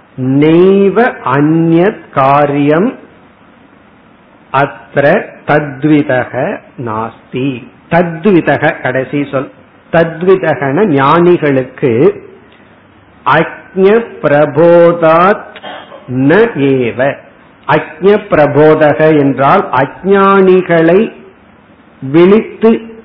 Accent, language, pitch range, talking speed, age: native, Tamil, 135-175 Hz, 35 wpm, 50-69